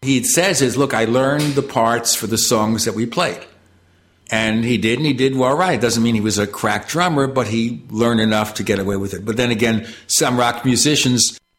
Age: 60-79